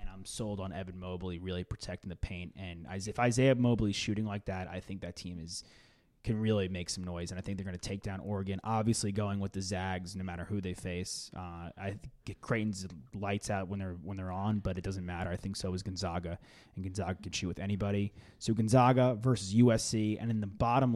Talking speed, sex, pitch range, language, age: 230 wpm, male, 95-120 Hz, English, 20-39